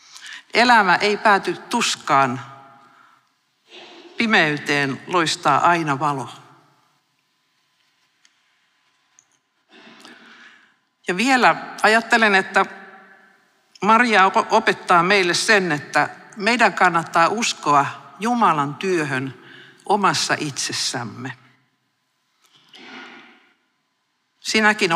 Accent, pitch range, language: native, 150-205 Hz, Finnish